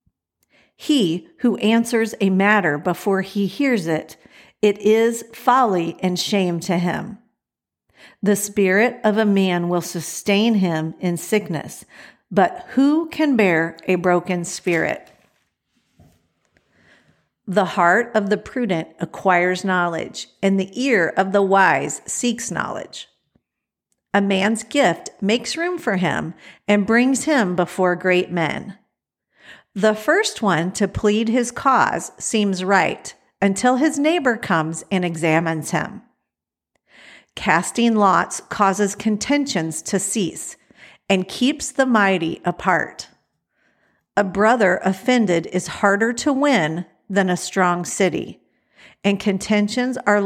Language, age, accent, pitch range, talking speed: English, 50-69, American, 180-225 Hz, 120 wpm